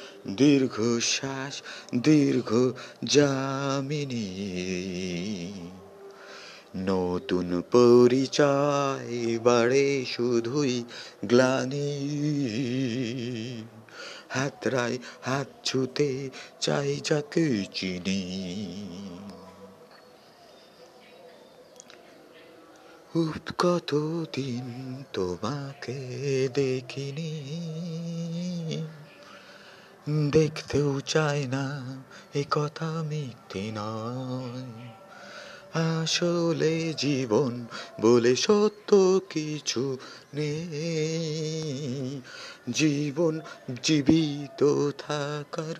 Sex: male